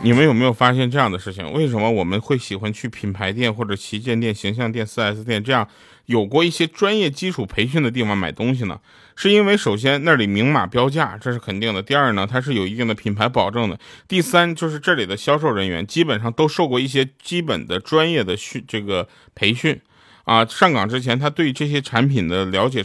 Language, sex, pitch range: Chinese, male, 115-165 Hz